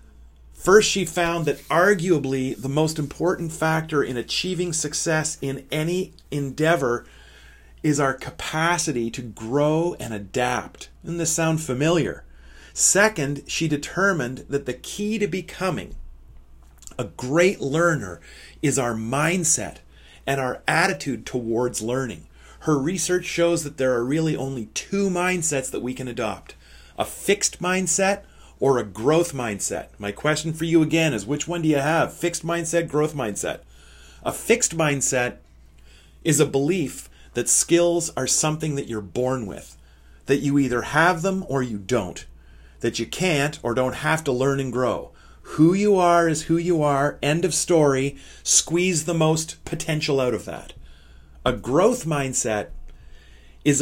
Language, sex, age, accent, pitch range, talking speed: English, male, 40-59, American, 120-165 Hz, 150 wpm